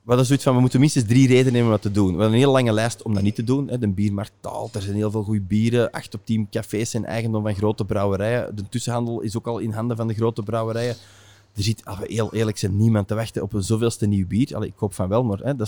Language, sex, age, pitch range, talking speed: Dutch, male, 20-39, 105-125 Hz, 280 wpm